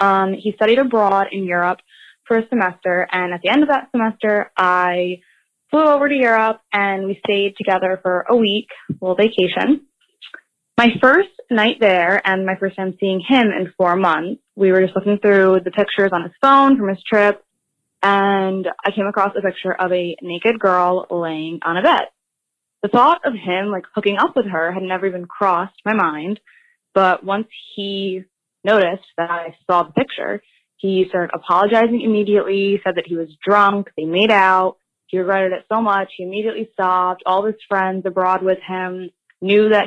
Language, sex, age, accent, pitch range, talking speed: English, female, 10-29, American, 180-210 Hz, 185 wpm